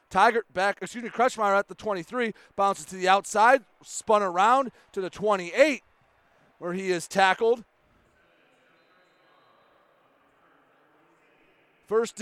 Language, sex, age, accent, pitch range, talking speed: English, male, 30-49, American, 180-230 Hz, 110 wpm